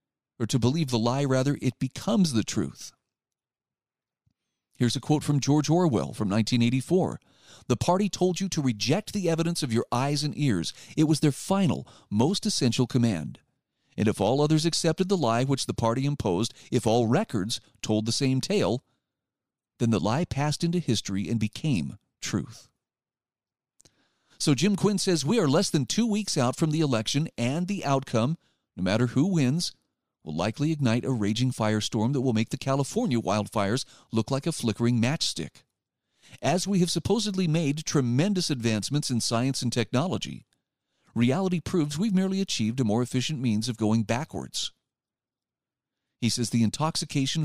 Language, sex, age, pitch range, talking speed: English, male, 40-59, 115-160 Hz, 165 wpm